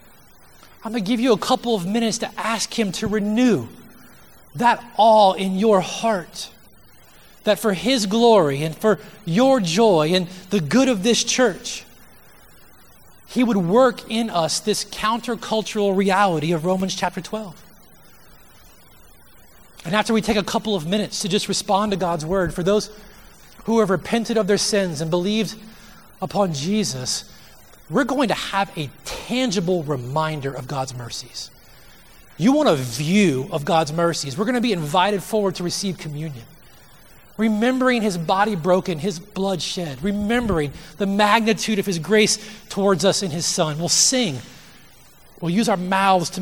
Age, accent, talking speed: 30-49, American, 155 wpm